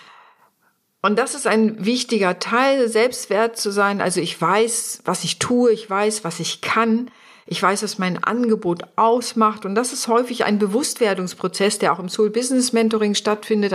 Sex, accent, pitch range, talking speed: female, German, 180-225 Hz, 170 wpm